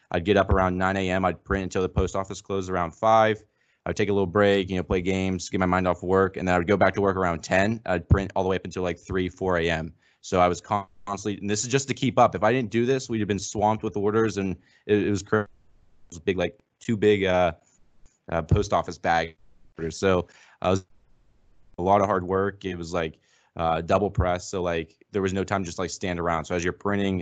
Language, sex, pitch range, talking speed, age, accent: English, male, 90-100 Hz, 255 wpm, 20-39, American